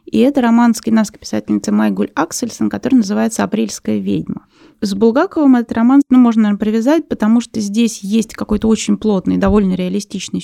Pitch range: 195-235 Hz